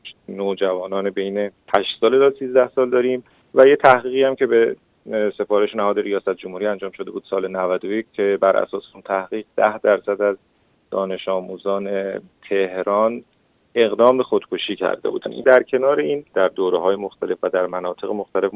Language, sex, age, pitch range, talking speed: Persian, male, 30-49, 100-135 Hz, 160 wpm